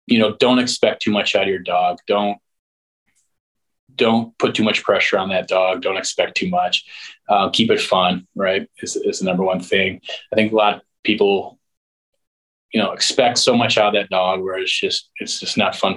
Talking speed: 210 wpm